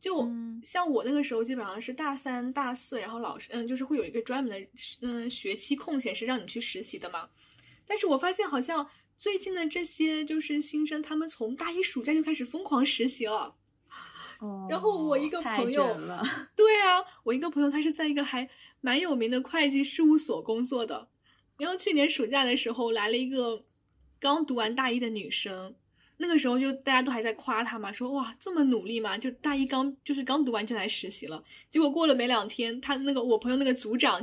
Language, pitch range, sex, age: Chinese, 230-300 Hz, female, 10-29